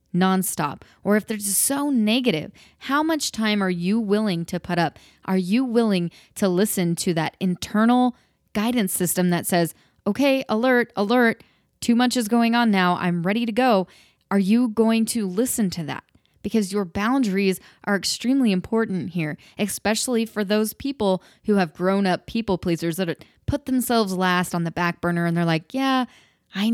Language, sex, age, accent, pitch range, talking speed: English, female, 20-39, American, 185-235 Hz, 175 wpm